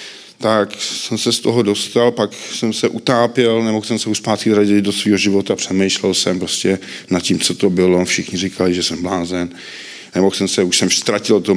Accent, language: native, Czech